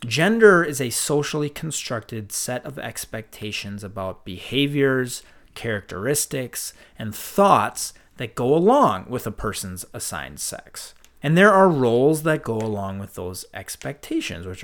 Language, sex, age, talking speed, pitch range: English, male, 30-49, 130 wpm, 105-145 Hz